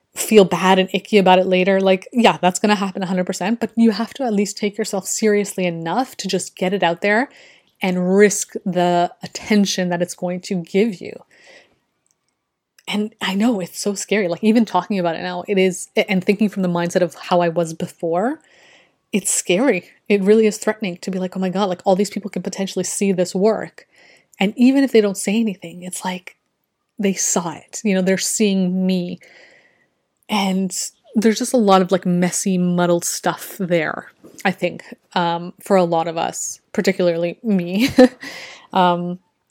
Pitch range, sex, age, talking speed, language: 180-215 Hz, female, 20-39, 190 wpm, English